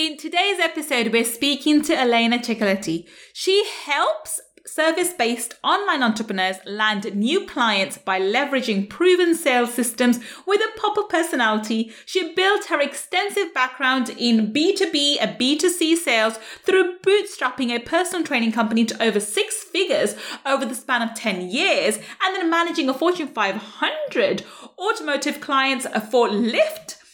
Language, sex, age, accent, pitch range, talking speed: English, female, 30-49, British, 225-315 Hz, 135 wpm